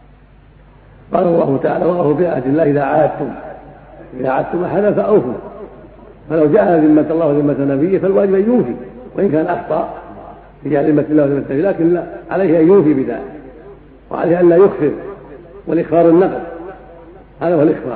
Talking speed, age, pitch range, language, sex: 140 wpm, 70-89, 140-165 Hz, Arabic, male